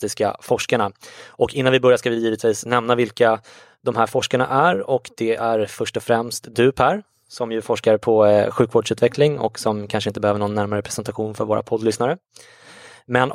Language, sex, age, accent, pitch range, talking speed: English, male, 20-39, Swedish, 105-120 Hz, 175 wpm